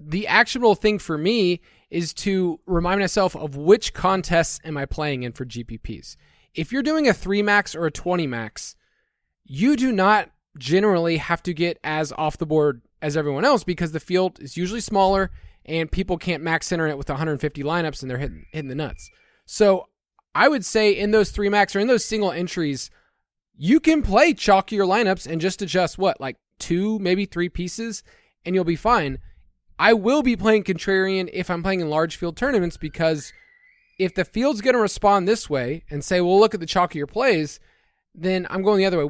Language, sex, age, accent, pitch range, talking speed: English, male, 20-39, American, 155-200 Hz, 200 wpm